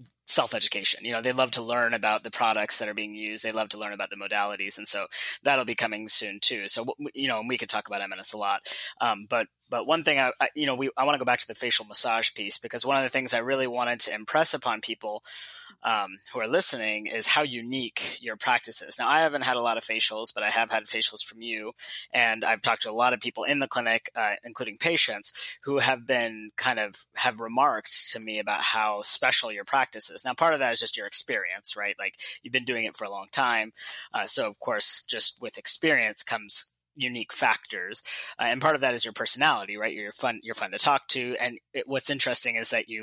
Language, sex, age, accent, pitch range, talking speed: English, male, 20-39, American, 110-130 Hz, 245 wpm